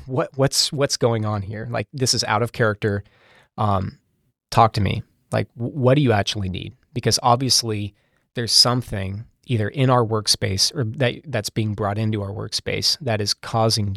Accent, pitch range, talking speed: American, 105-120 Hz, 175 wpm